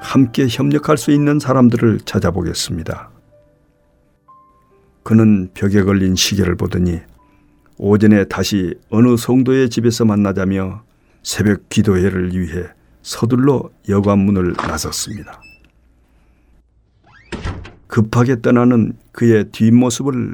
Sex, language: male, Korean